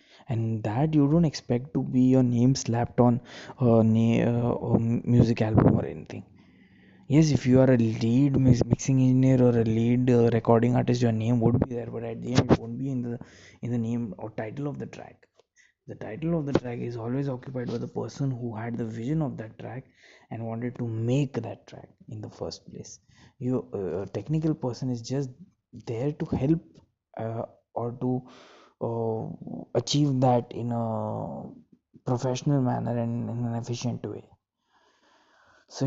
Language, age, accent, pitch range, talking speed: English, 20-39, Indian, 115-135 Hz, 170 wpm